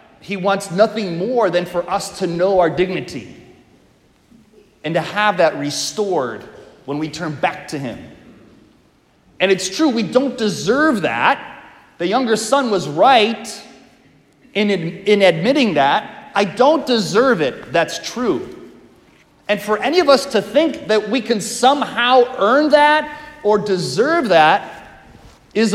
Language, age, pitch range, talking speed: English, 30-49, 180-245 Hz, 140 wpm